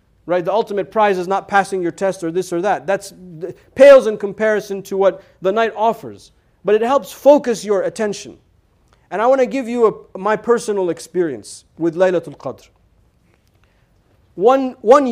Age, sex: 40-59, male